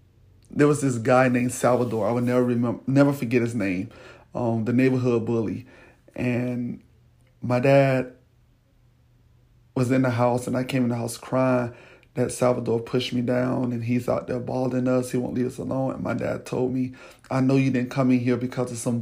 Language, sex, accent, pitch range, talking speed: English, male, American, 120-140 Hz, 200 wpm